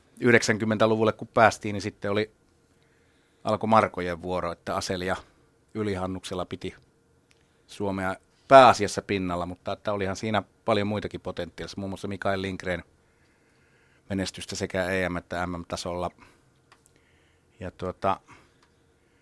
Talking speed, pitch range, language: 105 wpm, 95-110 Hz, Finnish